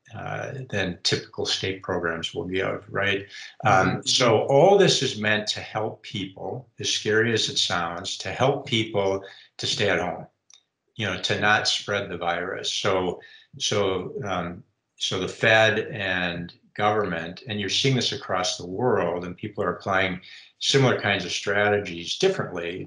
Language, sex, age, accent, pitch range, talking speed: English, male, 50-69, American, 95-130 Hz, 160 wpm